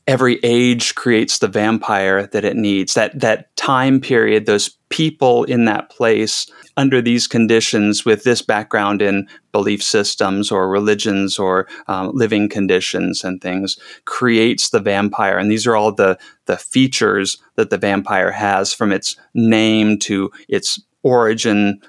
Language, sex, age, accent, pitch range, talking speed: English, male, 30-49, American, 100-115 Hz, 150 wpm